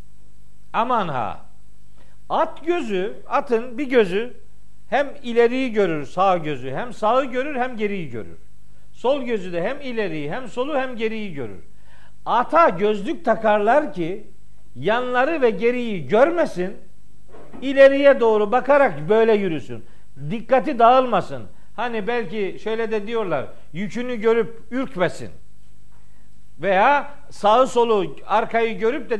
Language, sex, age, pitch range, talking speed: Turkish, male, 60-79, 195-255 Hz, 115 wpm